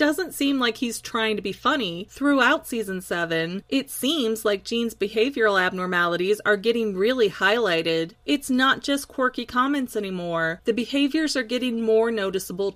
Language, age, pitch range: English, 30-49, 205-260 Hz